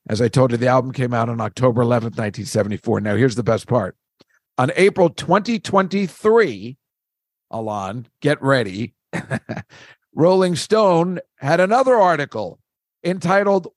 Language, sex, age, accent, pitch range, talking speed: English, male, 50-69, American, 135-185 Hz, 125 wpm